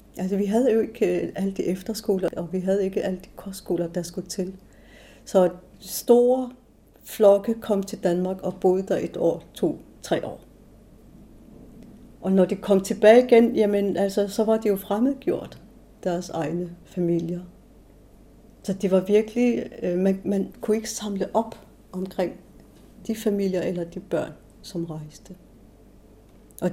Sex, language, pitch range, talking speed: female, Danish, 170-200 Hz, 150 wpm